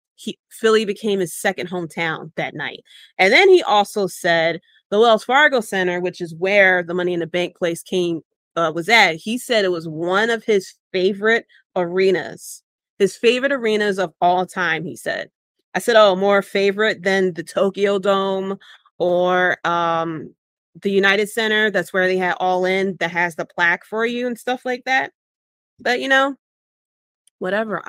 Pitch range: 180-220 Hz